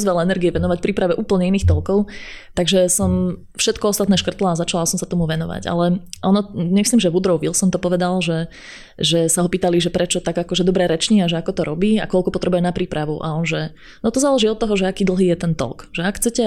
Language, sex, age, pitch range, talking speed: Slovak, female, 20-39, 175-200 Hz, 230 wpm